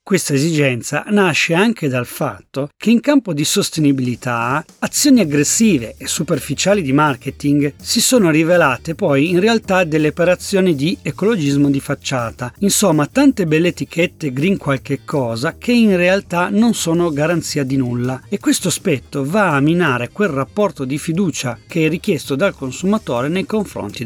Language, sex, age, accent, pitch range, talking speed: Italian, male, 40-59, native, 130-200 Hz, 150 wpm